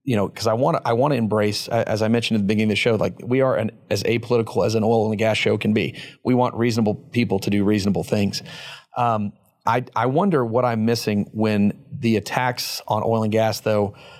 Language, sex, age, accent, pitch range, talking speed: English, male, 40-59, American, 110-130 Hz, 235 wpm